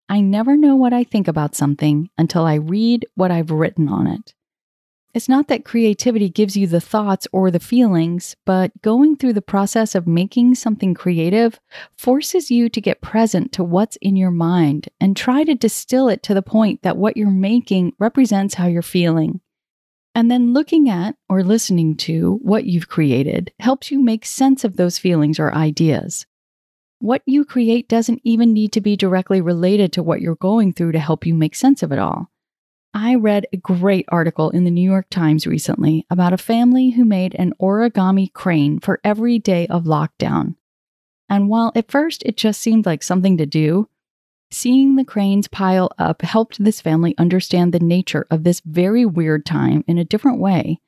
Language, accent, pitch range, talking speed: English, American, 170-230 Hz, 190 wpm